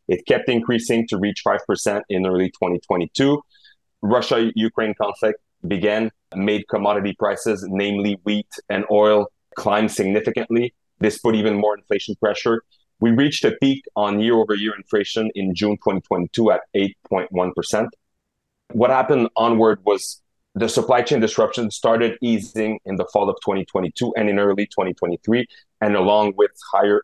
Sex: male